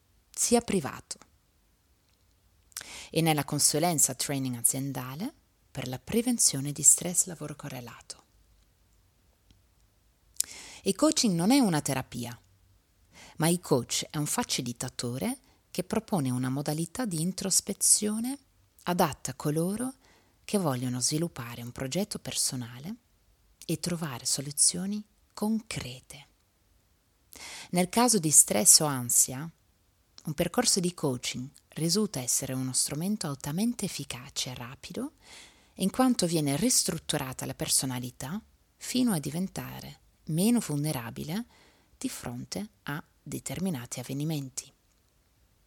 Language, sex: Italian, female